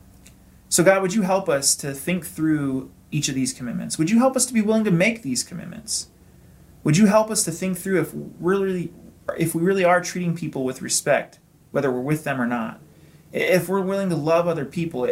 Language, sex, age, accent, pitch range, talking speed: English, male, 30-49, American, 145-190 Hz, 210 wpm